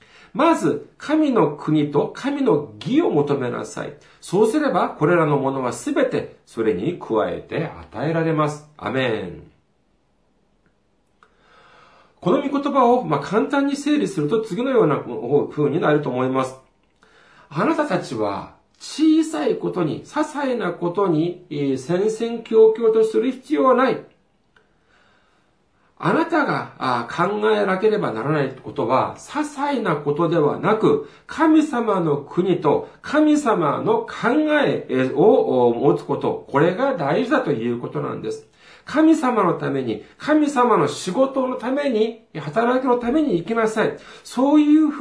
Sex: male